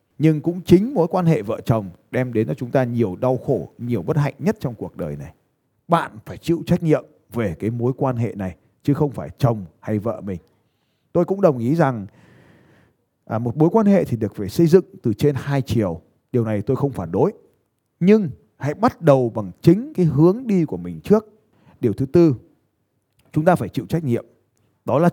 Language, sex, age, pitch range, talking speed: Vietnamese, male, 20-39, 105-155 Hz, 215 wpm